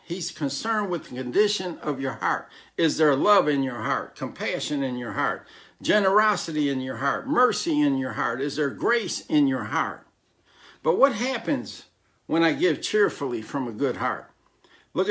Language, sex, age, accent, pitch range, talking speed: English, male, 60-79, American, 160-250 Hz, 175 wpm